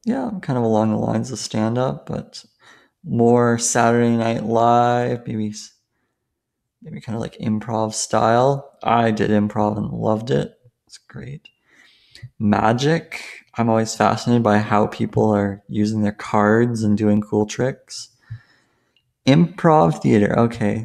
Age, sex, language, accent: 20-39, male, English, American